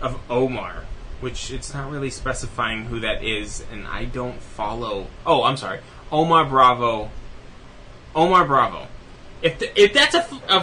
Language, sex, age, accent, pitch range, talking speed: English, male, 20-39, American, 120-155 Hz, 150 wpm